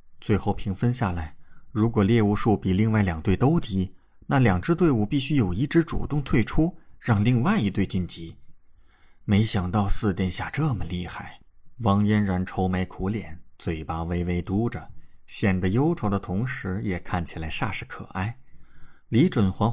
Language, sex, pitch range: Chinese, male, 85-115 Hz